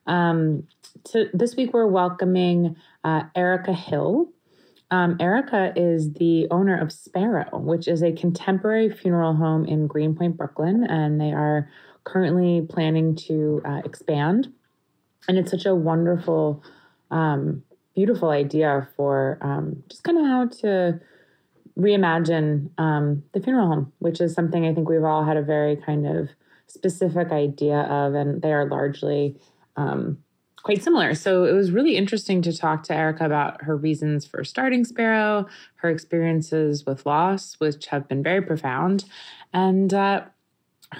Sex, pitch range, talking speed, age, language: female, 150-190 Hz, 150 wpm, 20-39, English